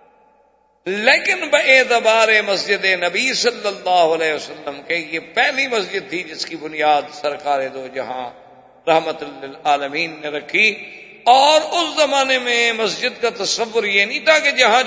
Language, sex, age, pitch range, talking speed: Urdu, male, 50-69, 155-245 Hz, 145 wpm